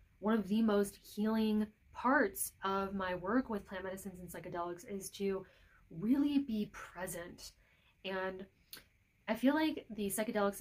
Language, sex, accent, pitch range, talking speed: English, female, American, 180-215 Hz, 140 wpm